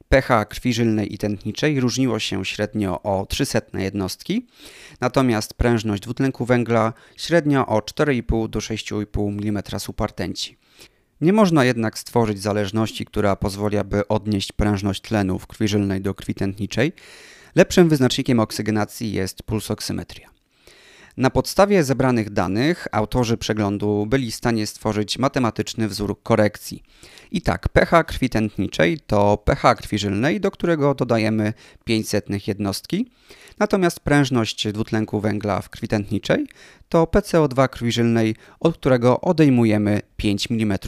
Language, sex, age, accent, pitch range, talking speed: Polish, male, 30-49, native, 105-135 Hz, 125 wpm